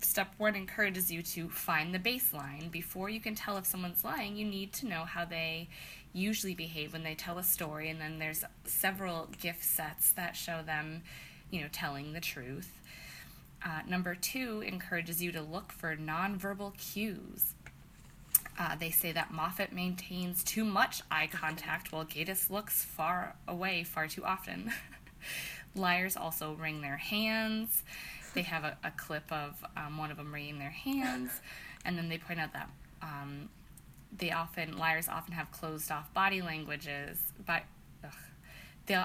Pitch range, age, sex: 155-200 Hz, 20-39, female